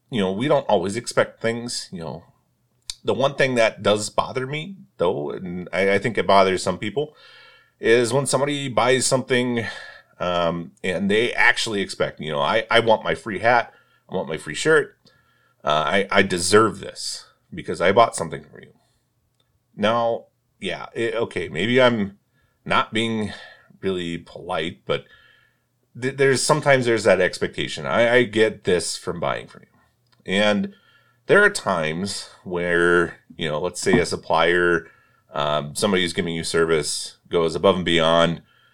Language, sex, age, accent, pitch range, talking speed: English, male, 30-49, American, 90-130 Hz, 160 wpm